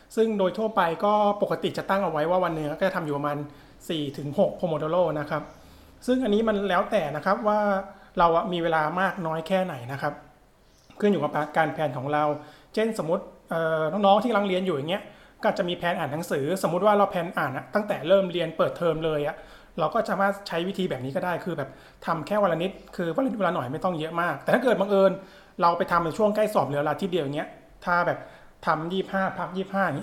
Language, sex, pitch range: Thai, male, 155-200 Hz